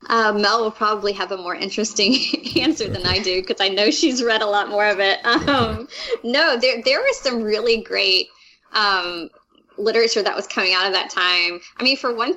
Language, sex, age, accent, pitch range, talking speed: English, female, 20-39, American, 185-230 Hz, 210 wpm